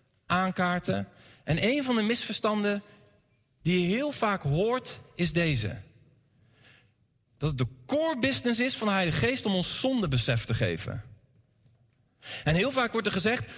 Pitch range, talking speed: 120-200 Hz, 145 wpm